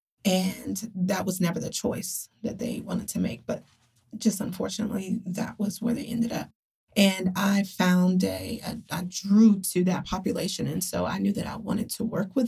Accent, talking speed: American, 190 wpm